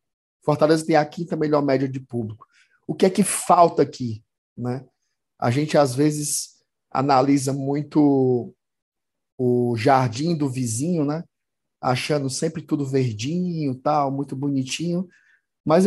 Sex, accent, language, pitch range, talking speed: male, Brazilian, Portuguese, 130-165 Hz, 130 wpm